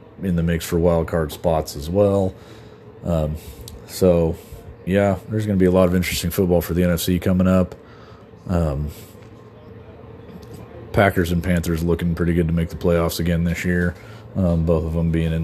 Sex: male